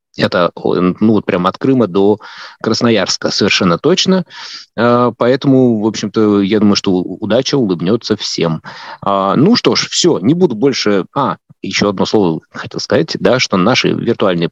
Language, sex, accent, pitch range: Russian, male, native, 100-135 Hz